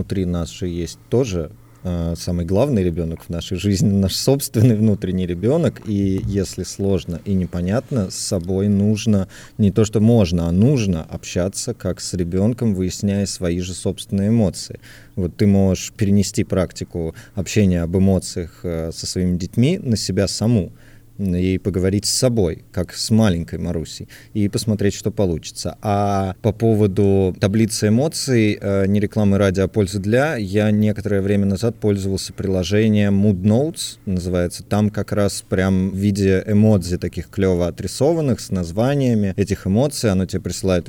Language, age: Russian, 30-49